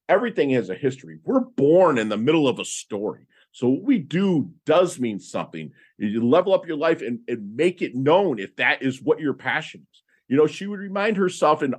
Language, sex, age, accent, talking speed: English, male, 40-59, American, 220 wpm